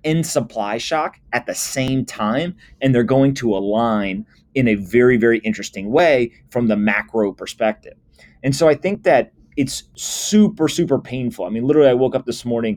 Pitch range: 110-140 Hz